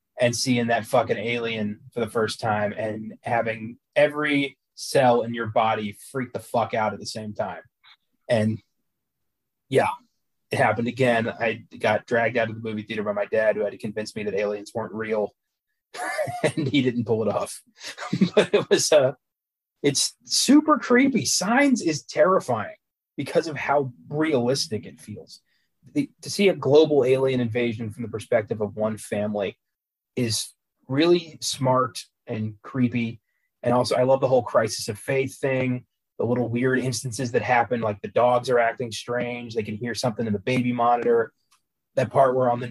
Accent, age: American, 30-49